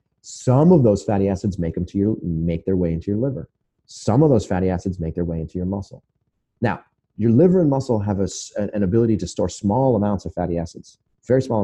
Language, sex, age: English, male, 30-49